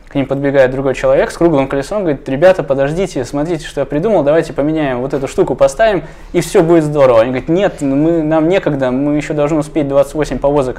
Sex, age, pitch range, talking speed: male, 20-39, 125-155 Hz, 205 wpm